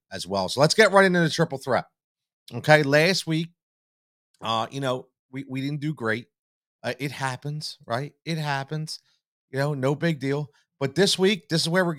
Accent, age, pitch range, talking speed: American, 30-49, 125-160 Hz, 195 wpm